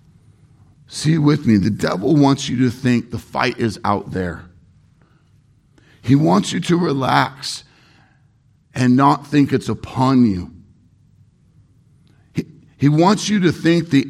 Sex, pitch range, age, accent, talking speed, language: male, 110-150 Hz, 50-69, American, 135 wpm, English